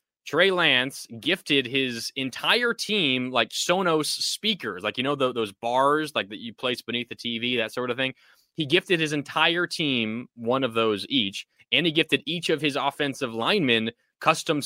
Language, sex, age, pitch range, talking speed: English, male, 20-39, 115-145 Hz, 180 wpm